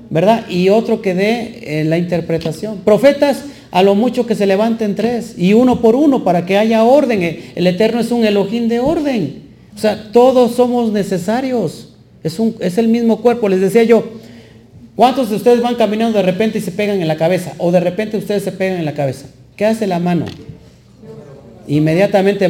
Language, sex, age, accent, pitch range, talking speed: Spanish, male, 40-59, Mexican, 180-230 Hz, 185 wpm